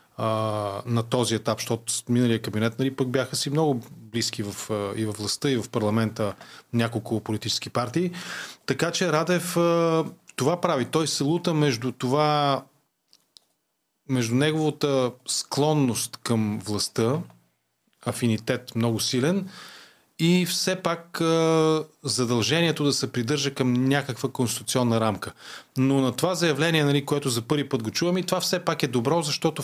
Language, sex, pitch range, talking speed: Bulgarian, male, 115-150 Hz, 140 wpm